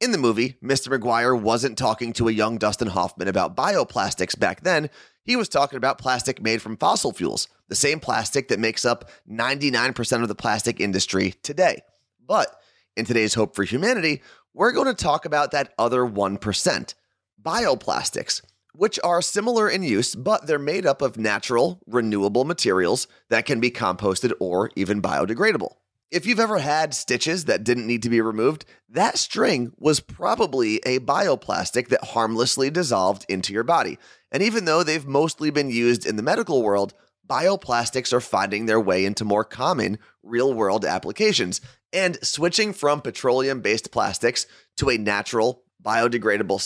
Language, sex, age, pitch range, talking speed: English, male, 30-49, 110-145 Hz, 160 wpm